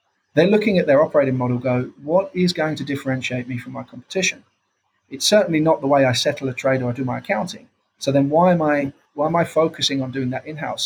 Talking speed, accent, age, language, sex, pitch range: 245 wpm, British, 30-49, English, male, 130-160 Hz